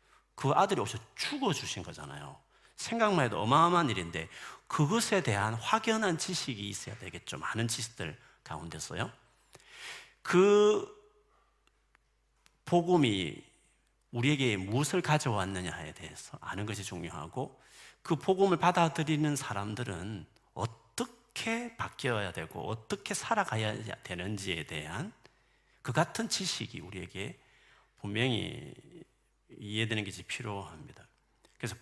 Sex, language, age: male, Korean, 40-59